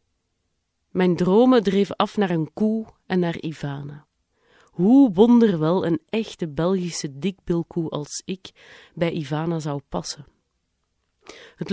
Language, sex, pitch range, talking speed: Dutch, female, 155-205 Hz, 120 wpm